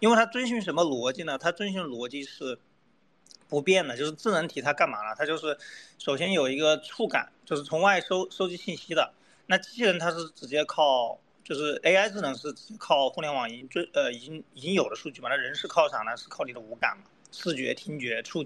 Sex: male